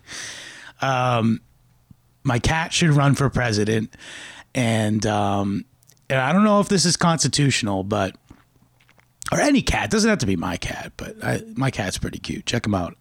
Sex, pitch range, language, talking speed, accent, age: male, 105-140 Hz, English, 170 wpm, American, 30-49